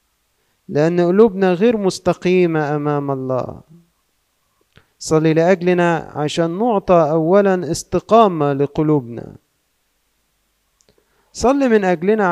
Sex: male